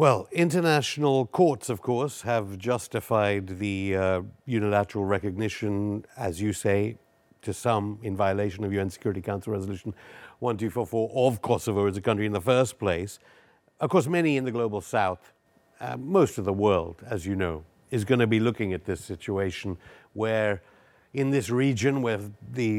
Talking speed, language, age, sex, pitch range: 165 wpm, English, 60-79, male, 100-120 Hz